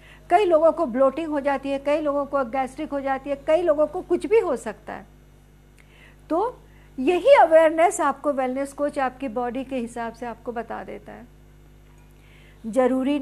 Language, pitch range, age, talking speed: Hindi, 250-310 Hz, 50-69, 175 wpm